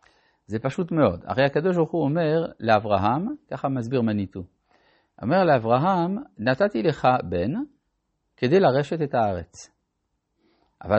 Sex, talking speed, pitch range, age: male, 120 wpm, 110-155 Hz, 50-69